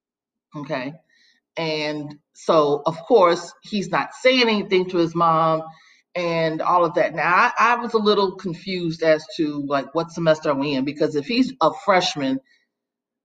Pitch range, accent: 150-195 Hz, American